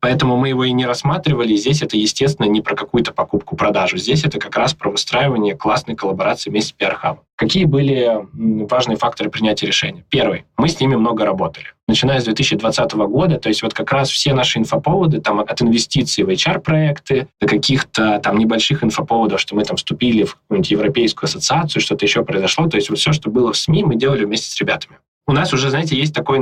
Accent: native